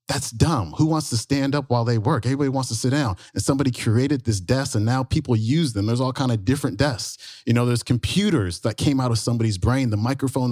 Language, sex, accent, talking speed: English, male, American, 245 wpm